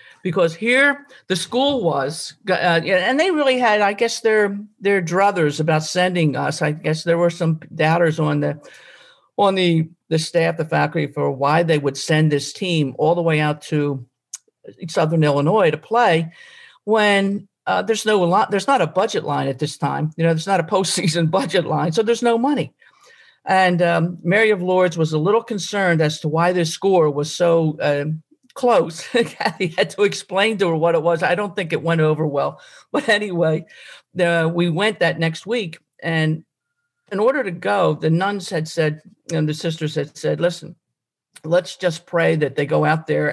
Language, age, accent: English, 50-69, American